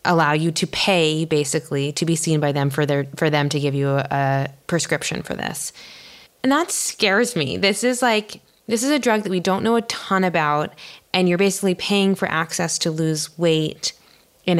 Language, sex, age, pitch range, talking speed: English, female, 20-39, 150-180 Hz, 200 wpm